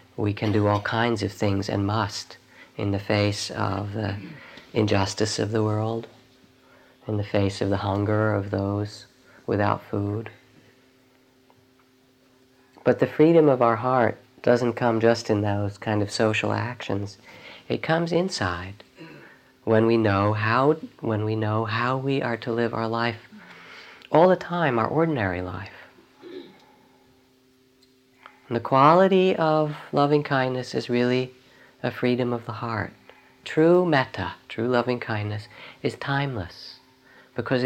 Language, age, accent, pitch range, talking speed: English, 40-59, American, 105-130 Hz, 130 wpm